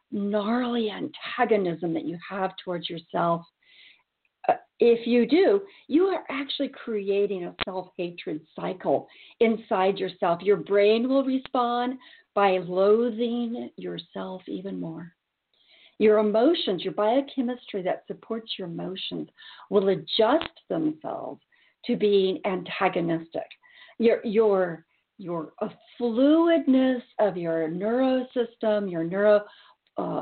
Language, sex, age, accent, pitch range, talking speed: English, female, 50-69, American, 185-245 Hz, 105 wpm